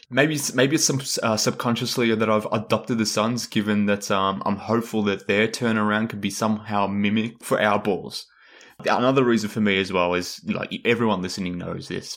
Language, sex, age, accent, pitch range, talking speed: English, male, 20-39, Australian, 95-115 Hz, 185 wpm